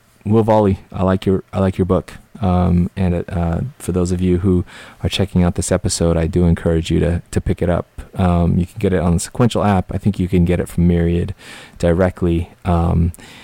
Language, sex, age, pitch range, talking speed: English, male, 30-49, 85-100 Hz, 225 wpm